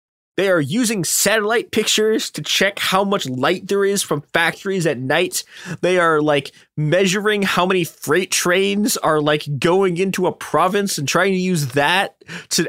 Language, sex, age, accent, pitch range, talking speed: English, male, 20-39, American, 145-200 Hz, 170 wpm